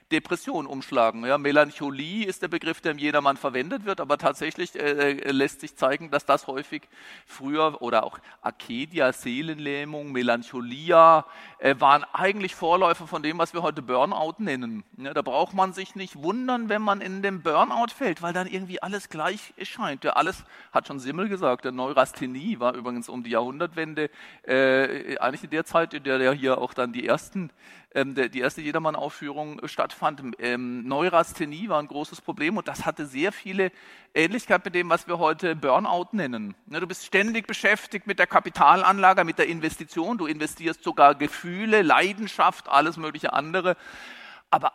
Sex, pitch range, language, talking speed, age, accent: male, 145-185 Hz, German, 170 wpm, 40-59, German